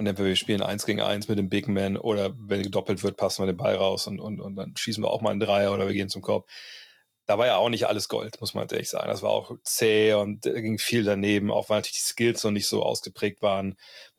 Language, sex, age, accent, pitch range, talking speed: German, male, 30-49, German, 100-115 Hz, 270 wpm